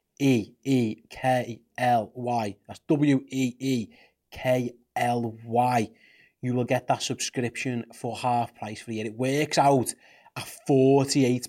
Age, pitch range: 30-49, 115-135 Hz